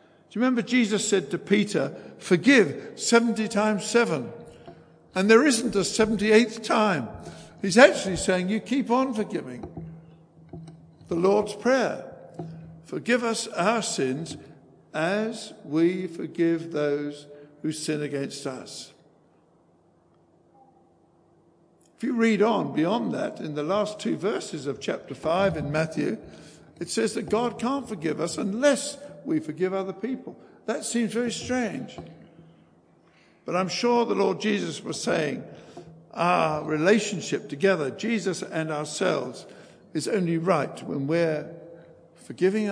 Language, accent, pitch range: English, British, 160-215 Hz